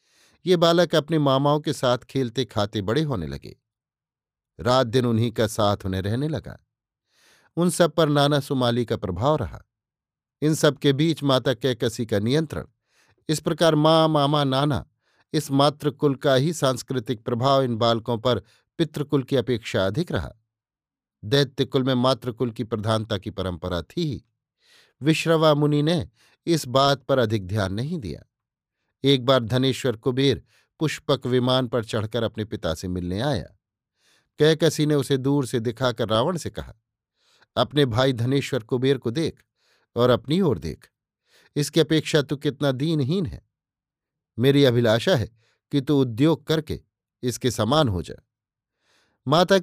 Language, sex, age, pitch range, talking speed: Hindi, male, 50-69, 115-145 Hz, 150 wpm